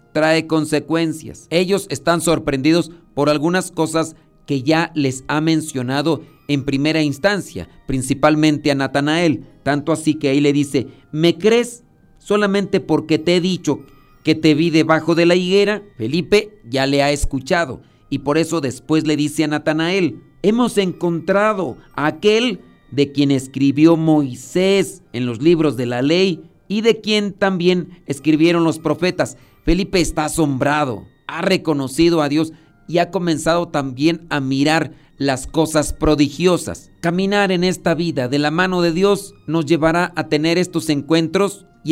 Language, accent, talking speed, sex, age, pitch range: Spanish, Mexican, 150 wpm, male, 40-59, 145-175 Hz